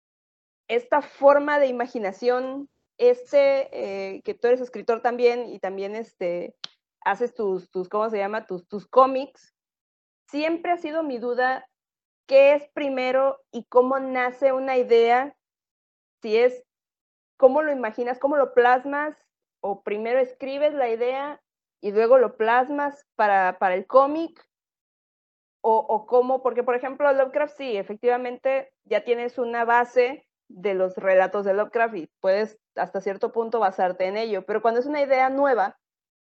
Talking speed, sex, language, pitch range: 145 wpm, female, Spanish, 220-280 Hz